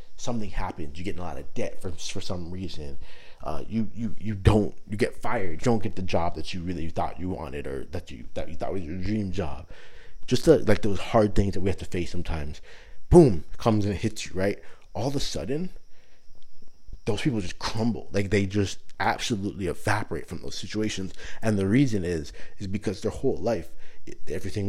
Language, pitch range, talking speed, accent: English, 85-110 Hz, 210 wpm, American